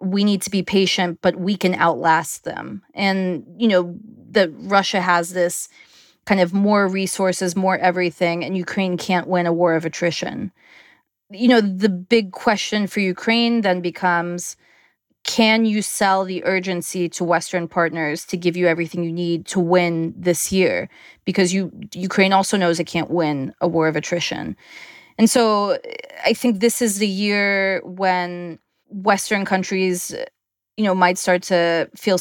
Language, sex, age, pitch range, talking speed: English, female, 20-39, 170-195 Hz, 160 wpm